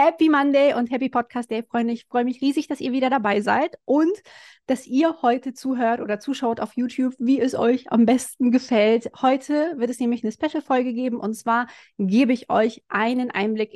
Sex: female